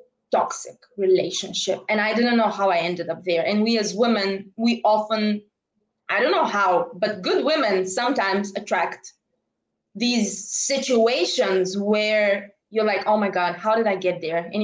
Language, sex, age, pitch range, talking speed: English, female, 20-39, 185-225 Hz, 165 wpm